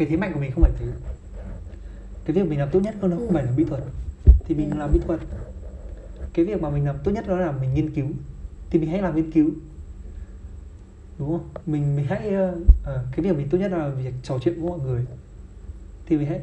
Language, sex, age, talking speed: Vietnamese, male, 20-39, 235 wpm